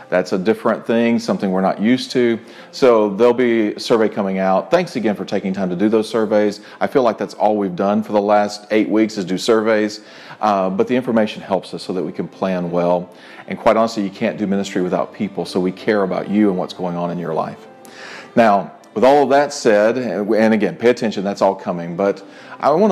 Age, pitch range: 40-59, 95-115 Hz